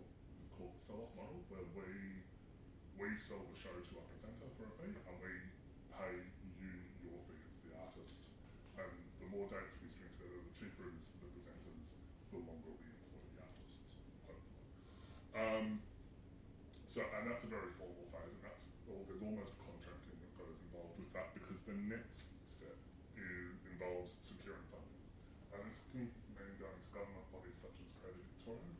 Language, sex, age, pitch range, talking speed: English, female, 20-39, 90-100 Hz, 170 wpm